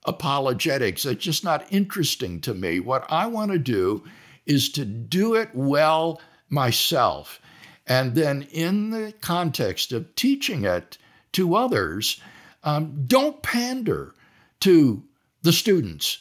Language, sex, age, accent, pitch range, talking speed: English, male, 60-79, American, 140-195 Hz, 125 wpm